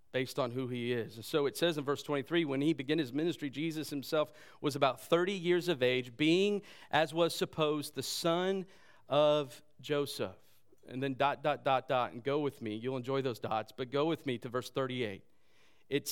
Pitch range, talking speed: 120-155 Hz, 205 wpm